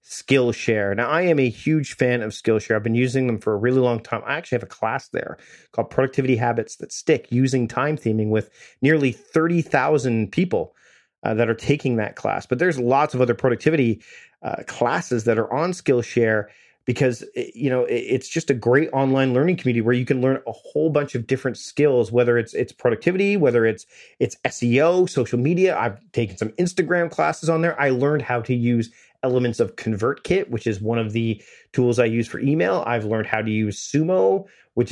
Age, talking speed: 30-49, 200 wpm